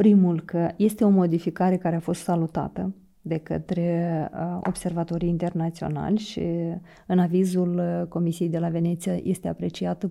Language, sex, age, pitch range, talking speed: Romanian, female, 30-49, 170-185 Hz, 130 wpm